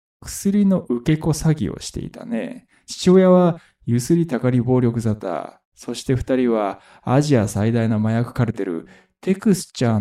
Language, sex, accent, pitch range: Japanese, male, native, 115-155 Hz